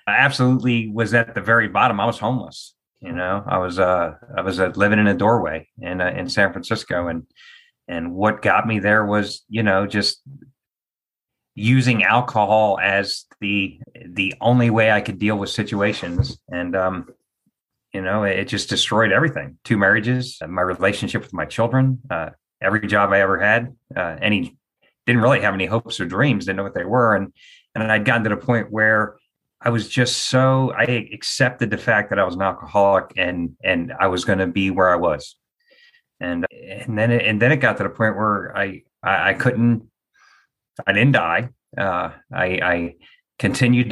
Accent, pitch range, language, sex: American, 95-115 Hz, English, male